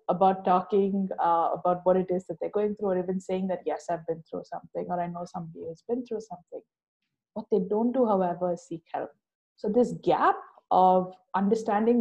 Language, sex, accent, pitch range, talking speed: English, female, Indian, 180-225 Hz, 205 wpm